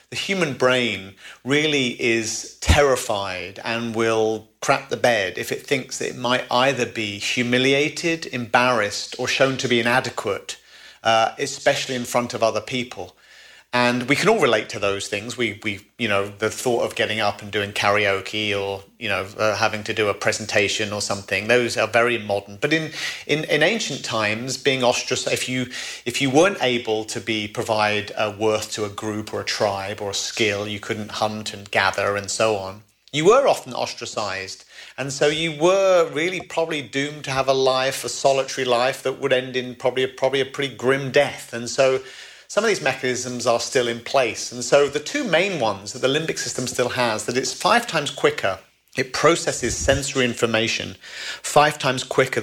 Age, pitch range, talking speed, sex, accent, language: 40-59, 105-135 Hz, 190 wpm, male, British, English